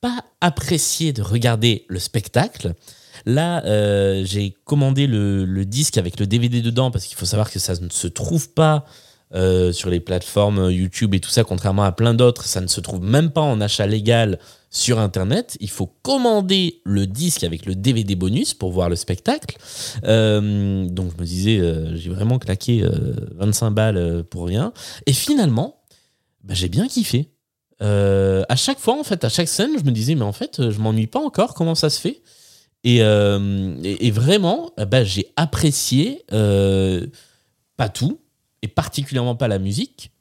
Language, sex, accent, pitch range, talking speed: French, male, French, 95-140 Hz, 180 wpm